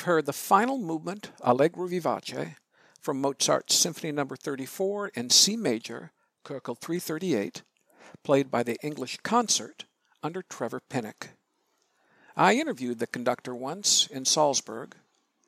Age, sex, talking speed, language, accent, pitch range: 60-79, male, 120 wpm, English, American, 135-215 Hz